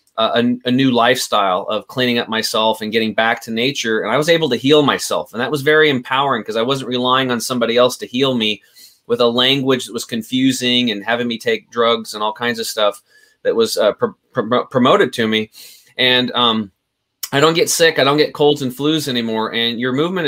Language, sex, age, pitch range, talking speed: English, male, 20-39, 115-135 Hz, 215 wpm